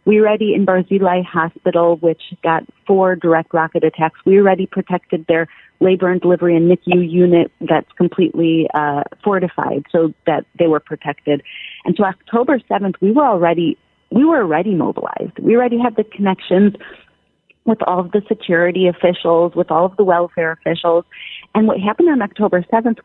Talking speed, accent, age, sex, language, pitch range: 165 wpm, American, 30-49, female, English, 170-215 Hz